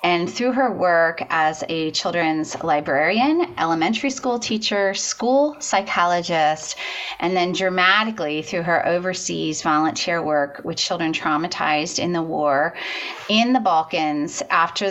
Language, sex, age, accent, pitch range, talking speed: English, female, 30-49, American, 155-205 Hz, 125 wpm